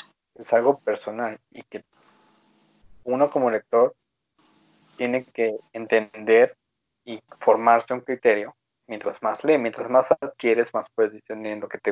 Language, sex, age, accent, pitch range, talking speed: Spanish, male, 20-39, Mexican, 110-135 Hz, 135 wpm